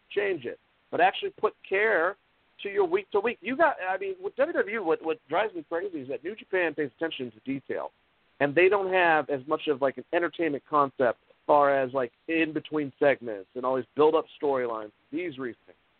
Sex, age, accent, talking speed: male, 40-59, American, 205 wpm